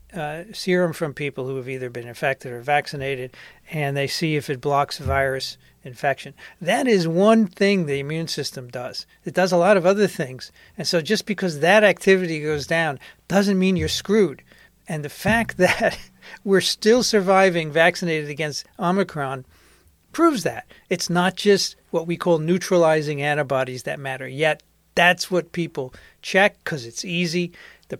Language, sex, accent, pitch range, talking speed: English, male, American, 145-185 Hz, 165 wpm